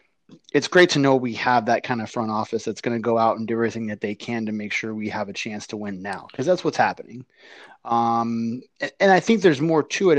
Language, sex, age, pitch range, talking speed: English, male, 30-49, 110-125 Hz, 260 wpm